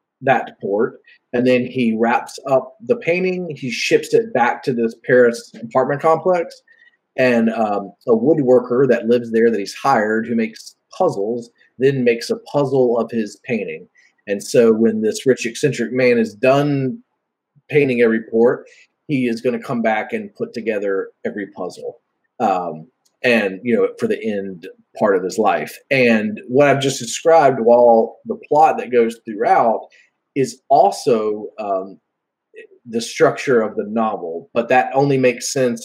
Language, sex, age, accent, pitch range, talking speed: English, male, 30-49, American, 115-175 Hz, 160 wpm